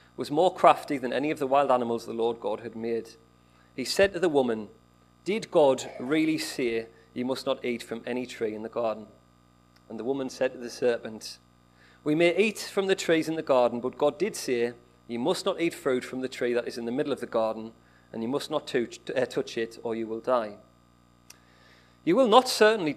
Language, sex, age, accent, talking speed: English, male, 40-59, British, 220 wpm